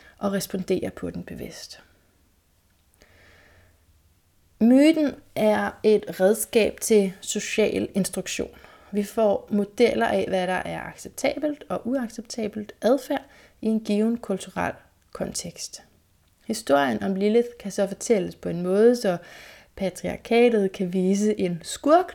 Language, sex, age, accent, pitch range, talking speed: Danish, female, 30-49, native, 185-230 Hz, 115 wpm